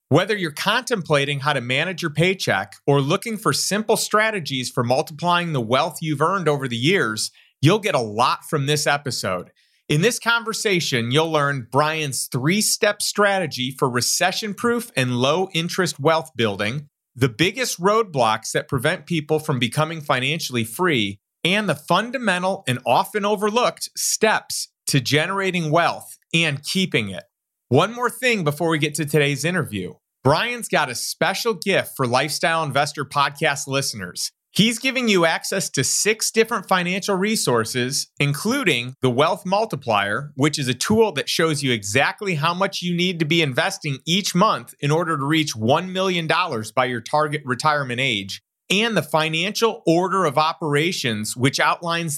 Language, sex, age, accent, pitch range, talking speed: English, male, 30-49, American, 135-190 Hz, 155 wpm